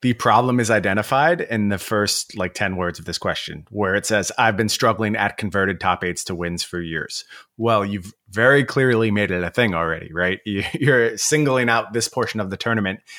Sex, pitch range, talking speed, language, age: male, 95-120 Hz, 205 wpm, English, 30-49